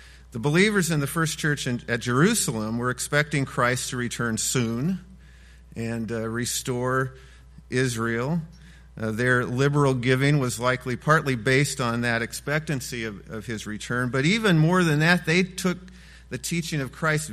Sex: male